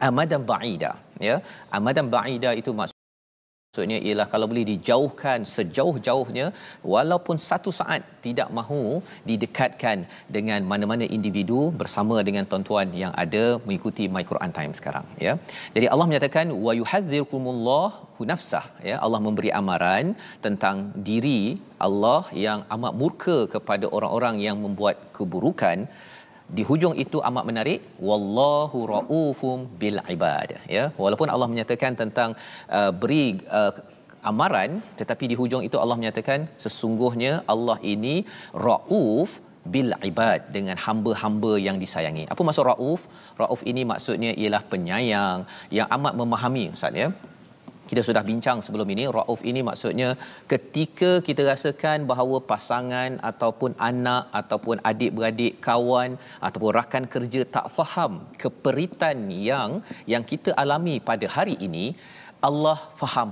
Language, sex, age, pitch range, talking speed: Malayalam, male, 40-59, 110-130 Hz, 125 wpm